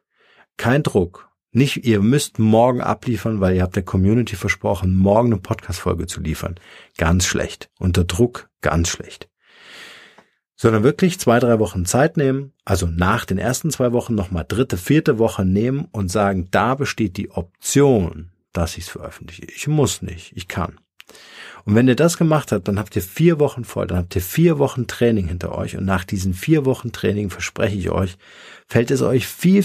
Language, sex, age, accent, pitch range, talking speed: German, male, 50-69, German, 90-115 Hz, 180 wpm